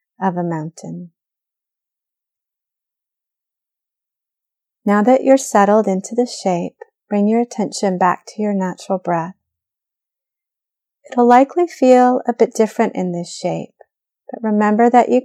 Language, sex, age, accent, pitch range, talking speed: English, female, 30-49, American, 190-235 Hz, 120 wpm